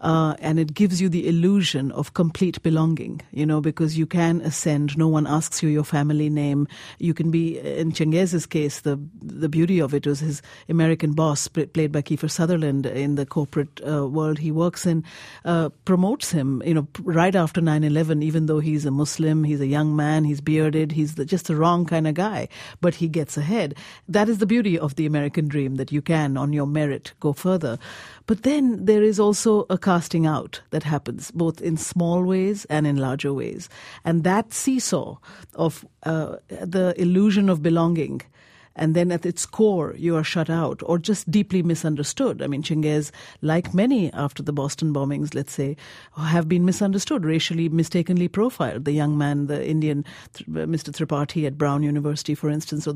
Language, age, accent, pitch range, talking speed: English, 50-69, Indian, 150-175 Hz, 190 wpm